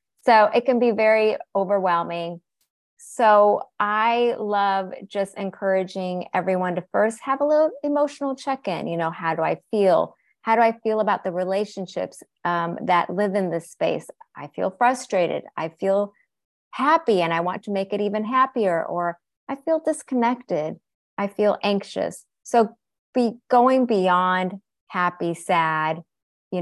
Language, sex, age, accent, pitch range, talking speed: English, female, 30-49, American, 175-220 Hz, 150 wpm